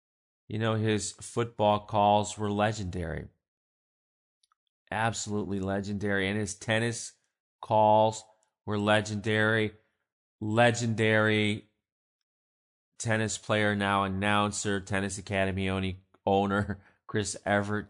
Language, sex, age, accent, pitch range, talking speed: English, male, 30-49, American, 95-115 Hz, 85 wpm